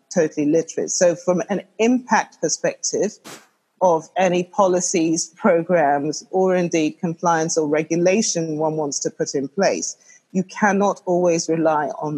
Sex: female